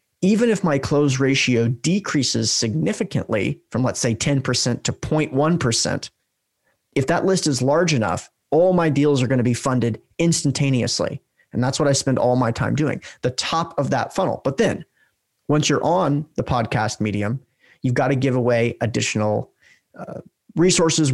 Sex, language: male, English